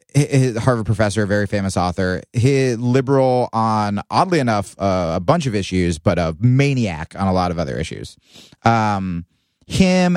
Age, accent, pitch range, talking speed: 30-49, American, 95-125 Hz, 150 wpm